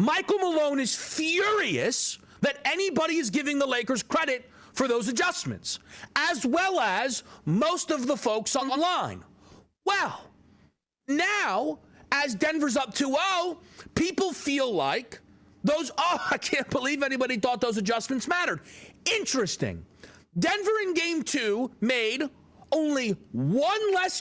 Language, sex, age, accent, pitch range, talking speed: English, male, 40-59, American, 255-330 Hz, 130 wpm